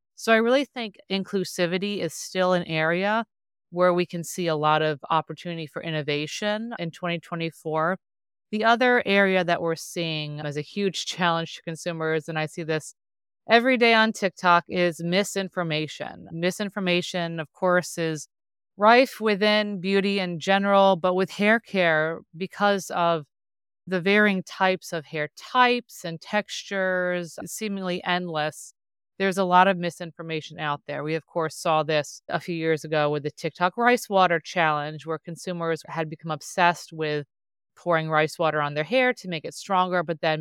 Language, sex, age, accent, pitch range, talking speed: English, female, 30-49, American, 155-190 Hz, 160 wpm